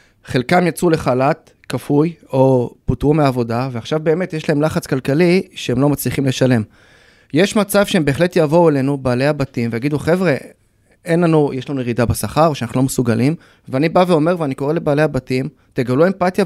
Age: 30-49